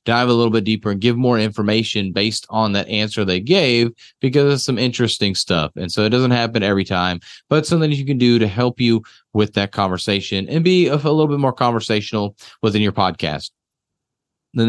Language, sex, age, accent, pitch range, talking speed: English, male, 30-49, American, 110-135 Hz, 200 wpm